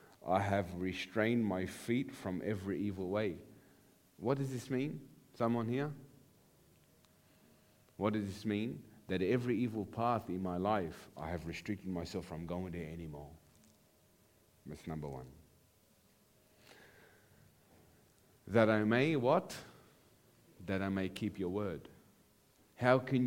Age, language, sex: 50-69, English, male